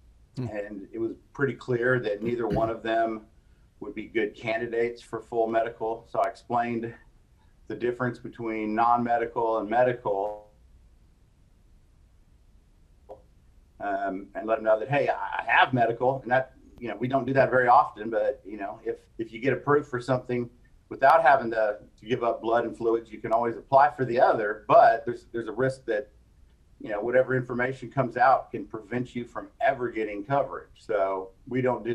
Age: 50-69